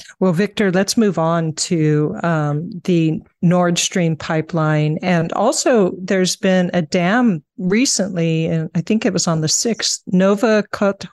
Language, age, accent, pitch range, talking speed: English, 50-69, American, 165-210 Hz, 145 wpm